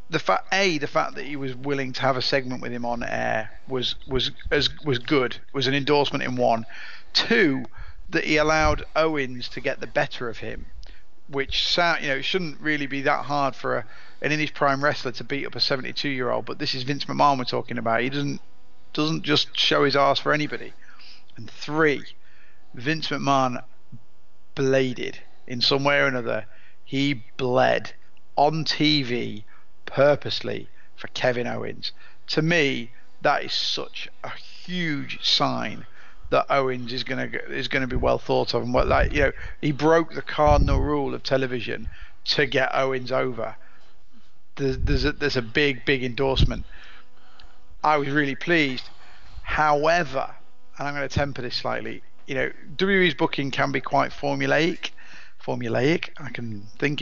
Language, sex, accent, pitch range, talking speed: English, male, British, 125-145 Hz, 175 wpm